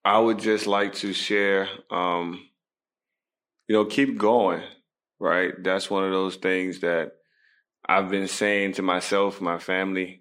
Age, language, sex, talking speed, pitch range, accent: 20-39, English, male, 145 wpm, 95-100 Hz, American